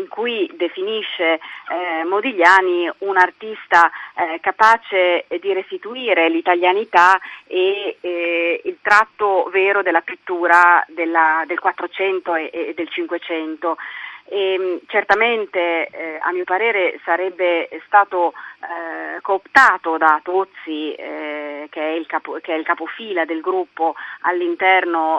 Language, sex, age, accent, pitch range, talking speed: Italian, female, 30-49, native, 165-195 Hz, 115 wpm